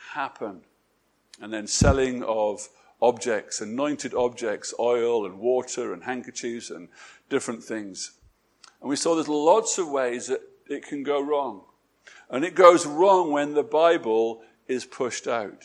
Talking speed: 145 wpm